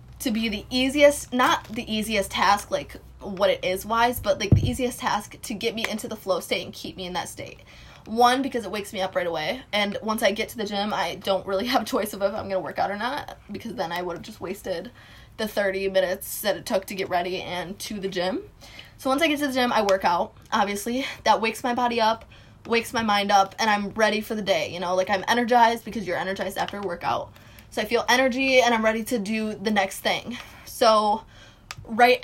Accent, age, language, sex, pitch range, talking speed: American, 20-39, English, female, 200-245 Hz, 245 wpm